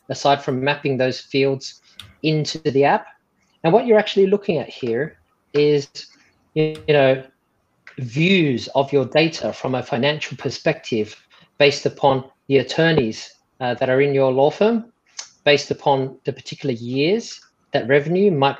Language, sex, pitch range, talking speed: English, male, 130-160 Hz, 140 wpm